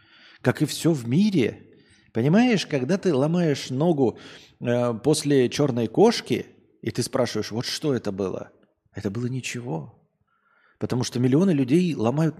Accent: native